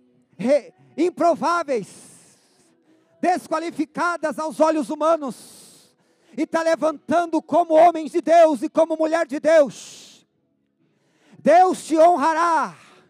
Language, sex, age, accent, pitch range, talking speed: Portuguese, male, 40-59, Brazilian, 295-340 Hz, 90 wpm